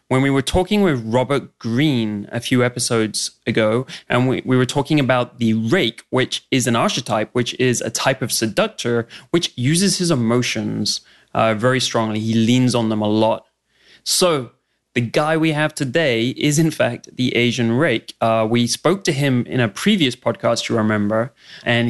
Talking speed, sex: 180 wpm, male